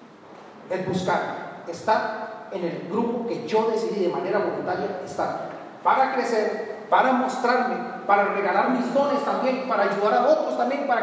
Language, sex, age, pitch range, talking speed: Spanish, male, 40-59, 210-270 Hz, 150 wpm